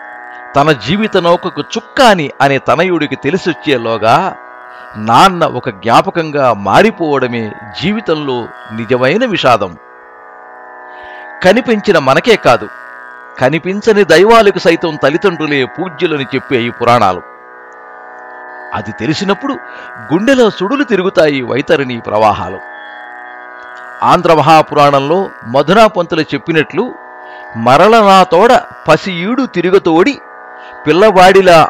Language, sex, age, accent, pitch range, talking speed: Telugu, male, 50-69, native, 120-175 Hz, 75 wpm